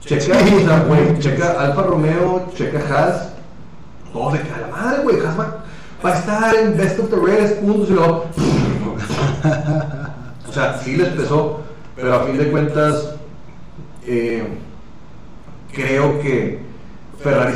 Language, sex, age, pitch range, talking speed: Spanish, male, 40-59, 115-150 Hz, 135 wpm